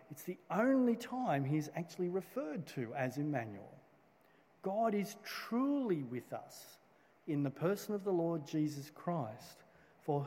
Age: 50-69